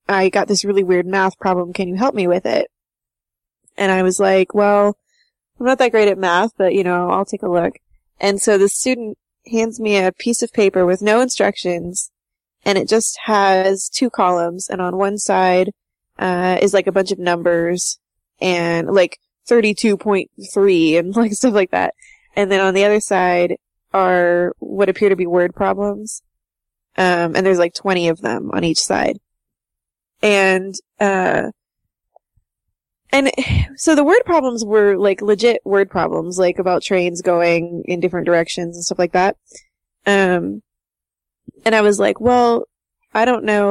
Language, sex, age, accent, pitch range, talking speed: English, female, 20-39, American, 180-210 Hz, 170 wpm